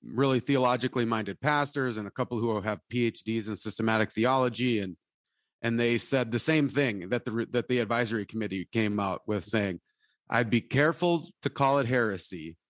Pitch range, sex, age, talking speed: 110-135 Hz, male, 30-49, 175 wpm